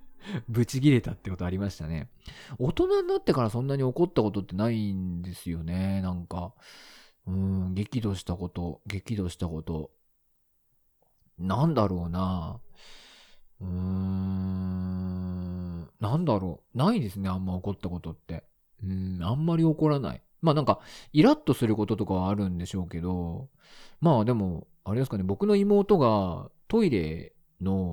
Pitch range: 90-150 Hz